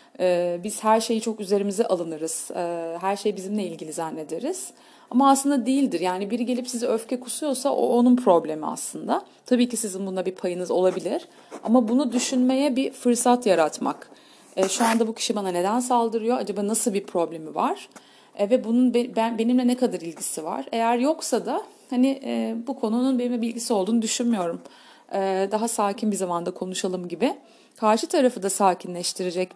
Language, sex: Turkish, female